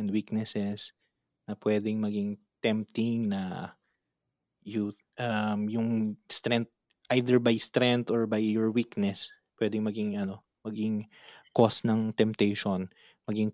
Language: Filipino